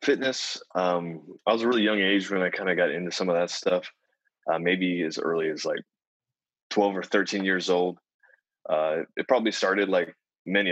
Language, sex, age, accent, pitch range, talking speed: English, male, 20-39, American, 85-95 Hz, 195 wpm